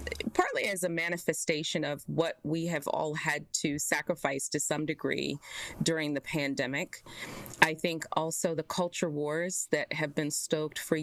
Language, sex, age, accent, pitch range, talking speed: English, female, 30-49, American, 155-185 Hz, 160 wpm